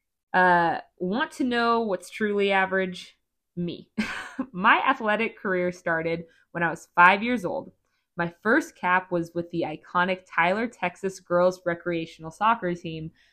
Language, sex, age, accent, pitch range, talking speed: English, female, 20-39, American, 175-220 Hz, 140 wpm